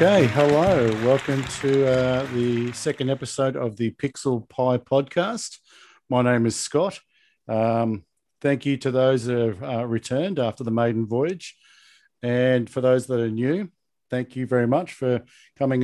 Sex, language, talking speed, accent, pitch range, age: male, English, 160 wpm, Australian, 120-145 Hz, 50-69